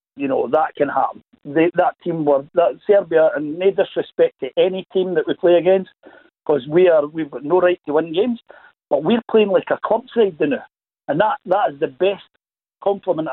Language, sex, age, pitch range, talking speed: English, male, 60-79, 155-215 Hz, 210 wpm